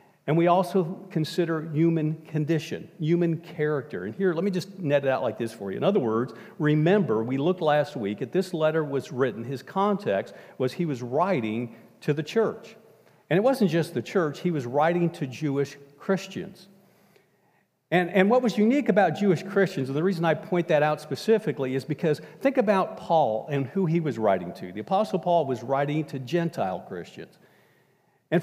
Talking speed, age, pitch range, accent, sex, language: 190 wpm, 50-69, 150-195 Hz, American, male, English